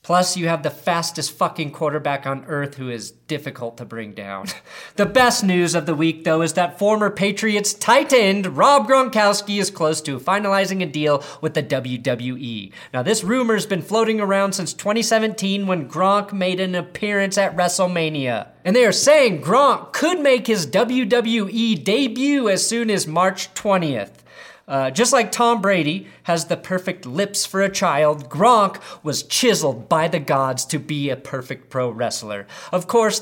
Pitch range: 150-200 Hz